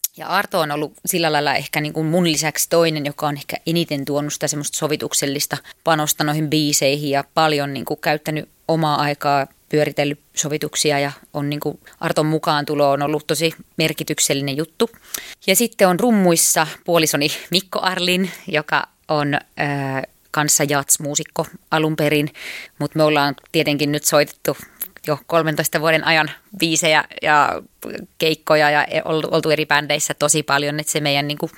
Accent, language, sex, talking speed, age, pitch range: native, Finnish, female, 150 wpm, 20-39, 145-165 Hz